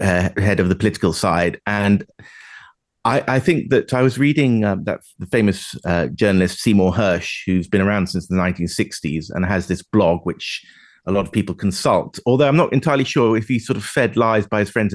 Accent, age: British, 30-49